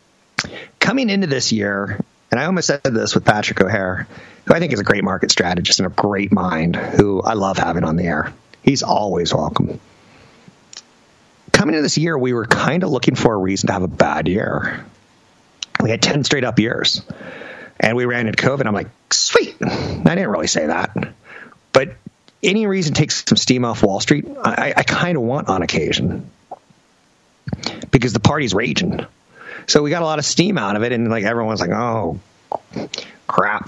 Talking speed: 185 wpm